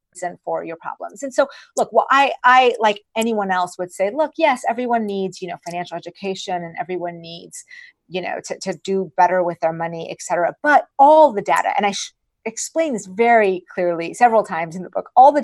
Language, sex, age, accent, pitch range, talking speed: English, female, 30-49, American, 185-245 Hz, 215 wpm